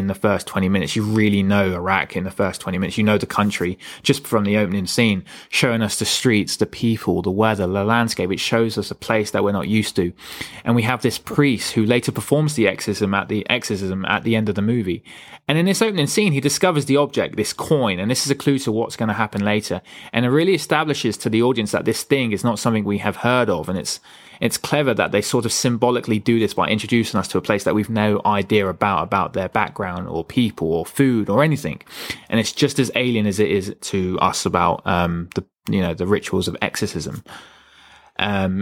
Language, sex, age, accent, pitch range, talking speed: English, male, 20-39, British, 100-125 Hz, 235 wpm